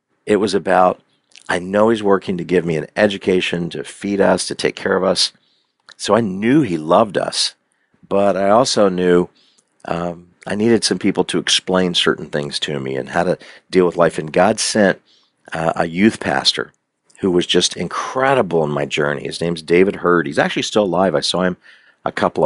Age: 50-69